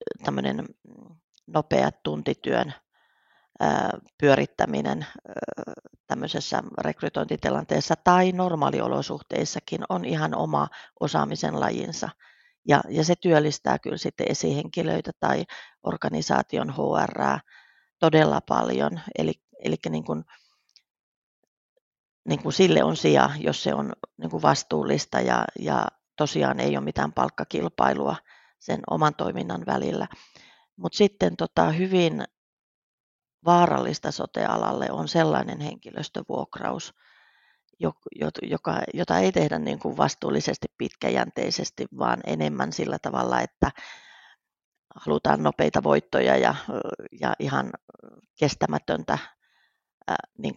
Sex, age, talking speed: female, 30-49, 95 wpm